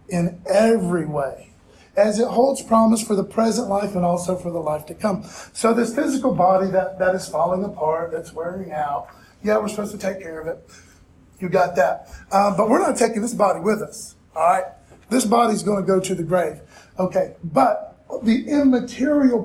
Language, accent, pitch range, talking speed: English, American, 170-225 Hz, 195 wpm